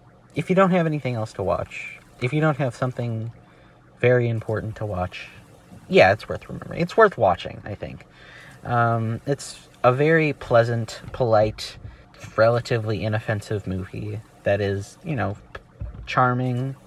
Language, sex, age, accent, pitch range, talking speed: English, male, 30-49, American, 100-130 Hz, 140 wpm